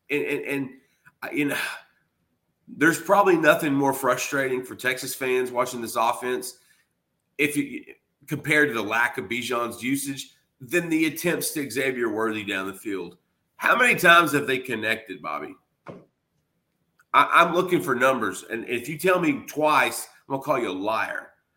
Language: English